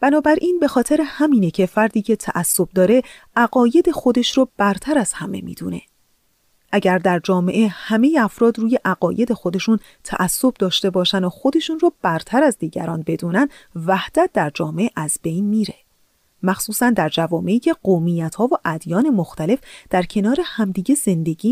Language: Persian